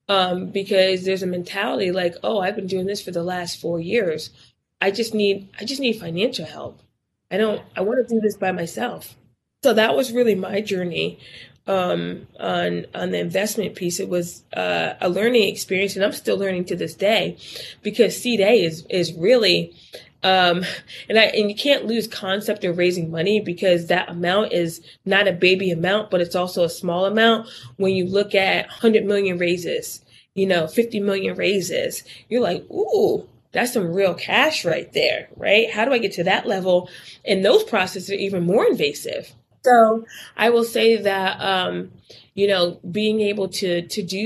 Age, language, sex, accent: 20-39, English, female, American